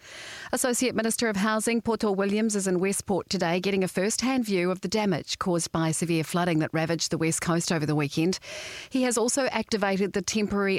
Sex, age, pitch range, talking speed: female, 40-59, 165-200 Hz, 195 wpm